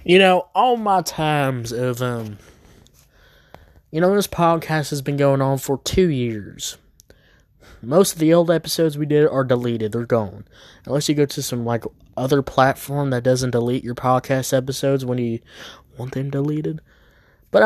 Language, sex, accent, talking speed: English, male, American, 165 wpm